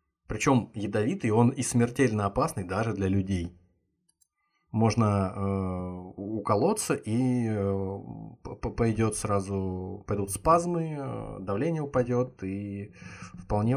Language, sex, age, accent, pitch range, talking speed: Russian, male, 20-39, native, 95-110 Hz, 95 wpm